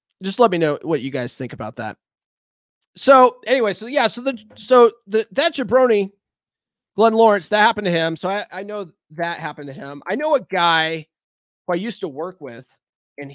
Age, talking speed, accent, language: 30-49, 200 wpm, American, English